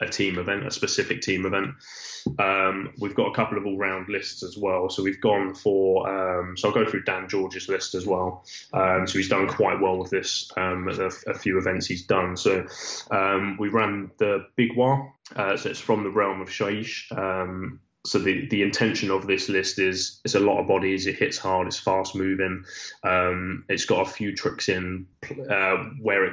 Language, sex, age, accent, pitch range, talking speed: English, male, 10-29, British, 95-100 Hz, 210 wpm